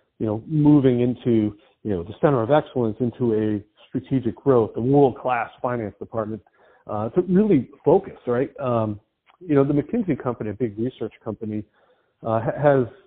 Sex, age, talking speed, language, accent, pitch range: male, 40-59, 160 wpm, English, American, 110-135 Hz